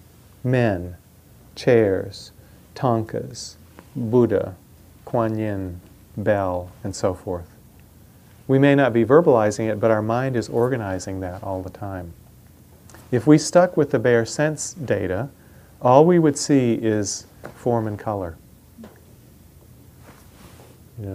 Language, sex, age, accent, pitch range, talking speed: English, male, 40-59, American, 95-125 Hz, 120 wpm